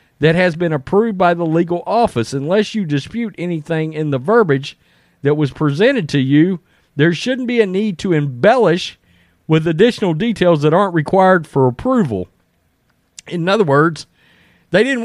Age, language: 40-59, English